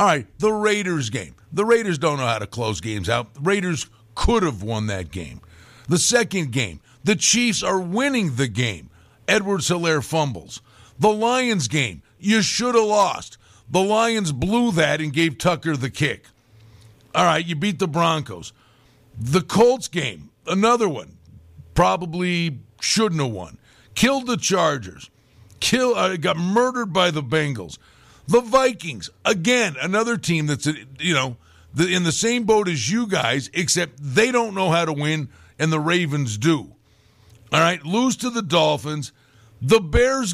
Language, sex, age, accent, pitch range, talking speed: English, male, 50-69, American, 130-210 Hz, 160 wpm